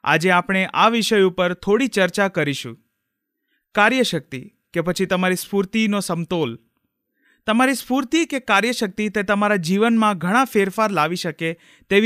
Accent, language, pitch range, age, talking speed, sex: native, Gujarati, 175-225 Hz, 30-49, 105 wpm, male